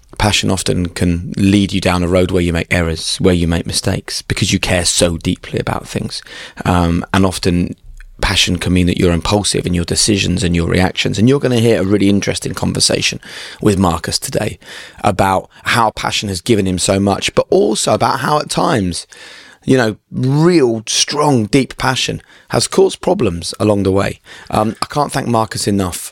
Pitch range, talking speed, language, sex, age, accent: 90-110 Hz, 190 wpm, English, male, 20-39, British